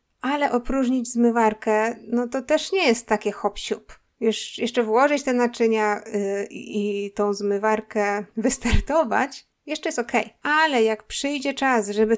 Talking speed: 140 wpm